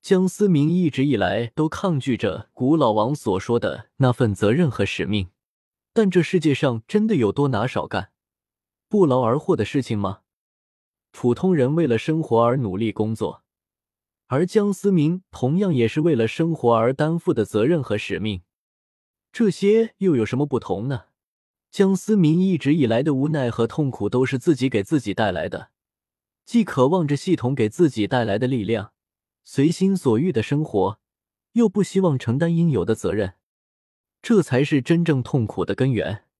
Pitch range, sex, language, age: 110-170 Hz, male, Chinese, 20-39